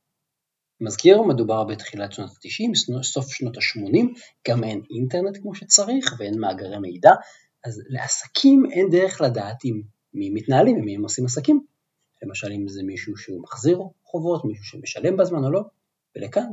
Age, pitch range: 40-59, 110-165 Hz